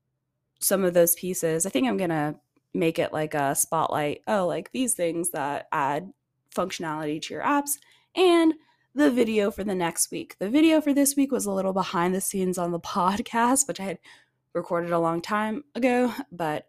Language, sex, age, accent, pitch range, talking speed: English, female, 20-39, American, 175-250 Hz, 195 wpm